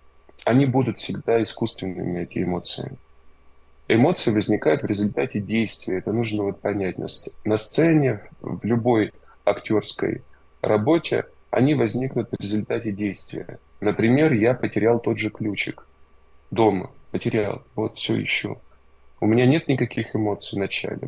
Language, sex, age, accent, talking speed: Russian, male, 20-39, native, 125 wpm